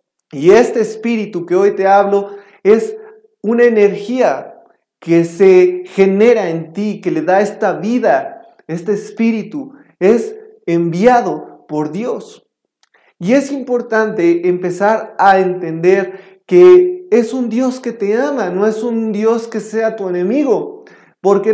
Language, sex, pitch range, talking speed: Spanish, male, 195-250 Hz, 135 wpm